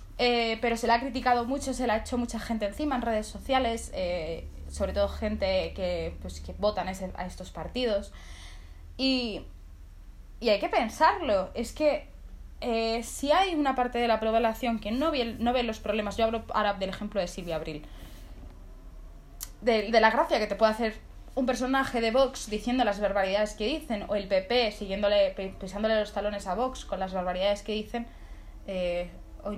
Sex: female